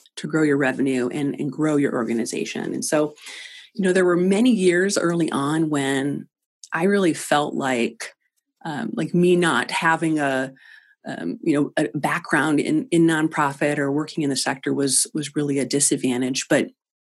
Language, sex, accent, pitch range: English, female, American, 145-195 Hz